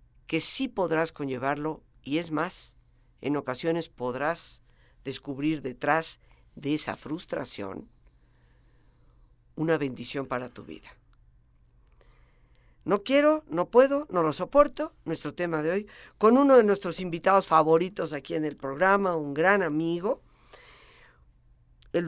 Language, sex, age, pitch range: Spanish, female, 50-69, 140-190 Hz